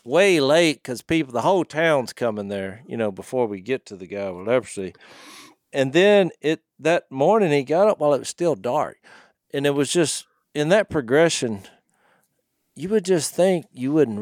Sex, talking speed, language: male, 195 wpm, English